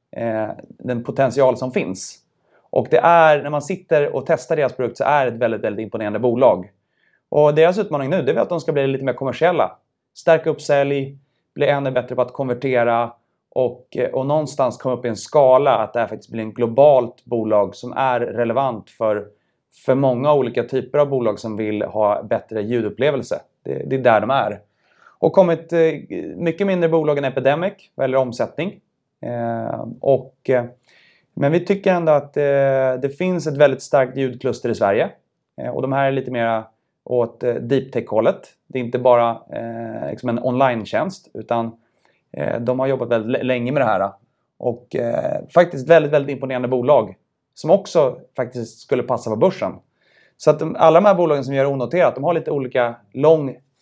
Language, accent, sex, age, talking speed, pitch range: Swedish, native, male, 30-49, 190 wpm, 120-145 Hz